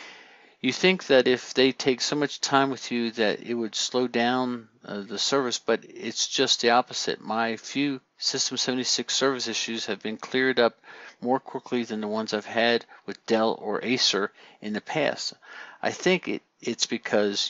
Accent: American